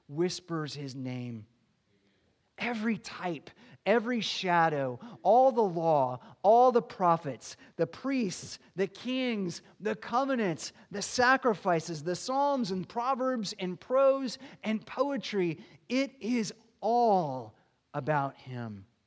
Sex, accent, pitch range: male, American, 145-215 Hz